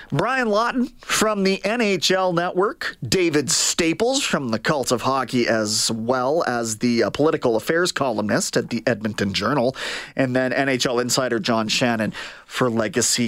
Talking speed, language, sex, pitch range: 150 wpm, English, male, 130-190 Hz